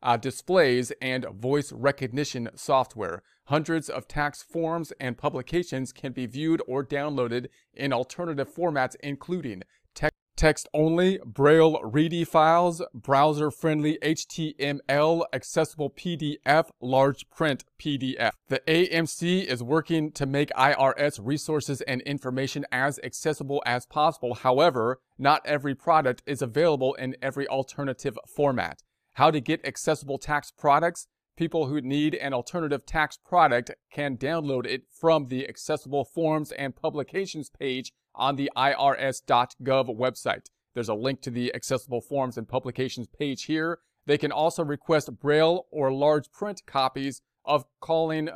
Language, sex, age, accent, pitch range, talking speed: English, male, 30-49, American, 130-155 Hz, 130 wpm